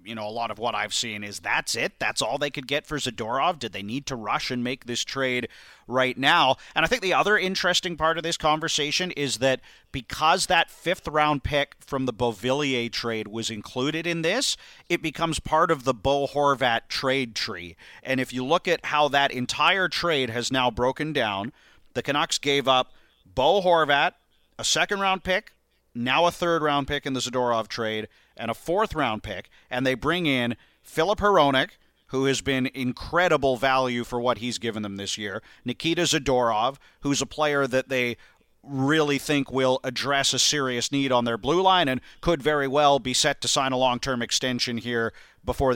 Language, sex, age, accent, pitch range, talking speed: English, male, 40-59, American, 120-145 Hz, 195 wpm